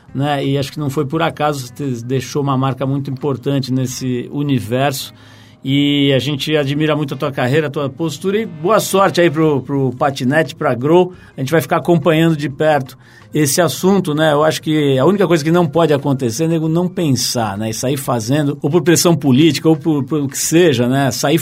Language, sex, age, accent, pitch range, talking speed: Portuguese, male, 50-69, Brazilian, 130-155 Hz, 215 wpm